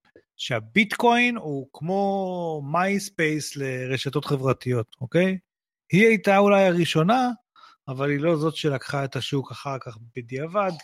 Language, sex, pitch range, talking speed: Hebrew, male, 135-185 Hz, 115 wpm